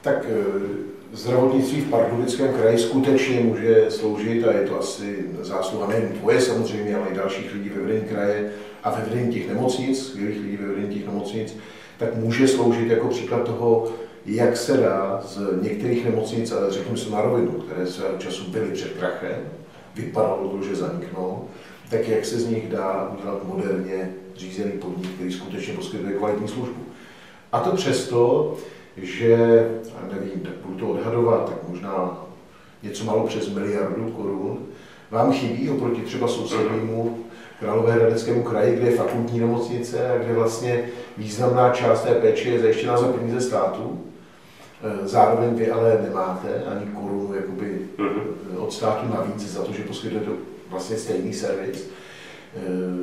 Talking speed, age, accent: 150 wpm, 50-69, native